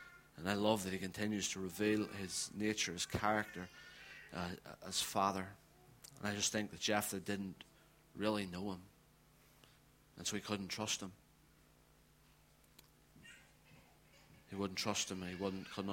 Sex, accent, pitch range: male, British, 90-115 Hz